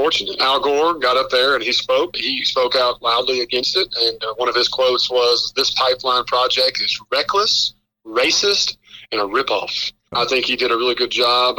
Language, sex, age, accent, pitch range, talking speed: English, male, 40-59, American, 120-170 Hz, 195 wpm